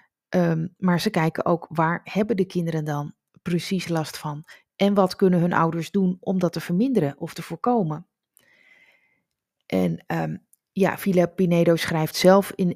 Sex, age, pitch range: female, 30-49, 160-195 Hz